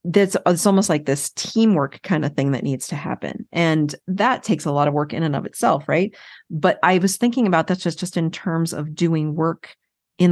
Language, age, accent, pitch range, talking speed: English, 40-59, American, 160-195 Hz, 225 wpm